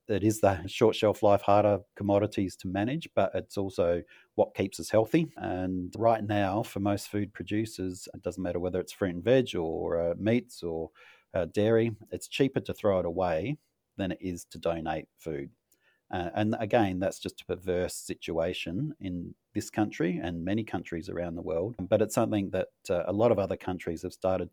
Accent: Australian